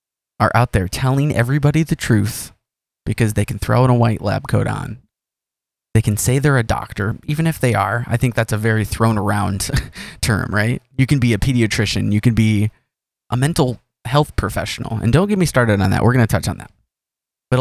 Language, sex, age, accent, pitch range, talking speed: English, male, 20-39, American, 110-140 Hz, 210 wpm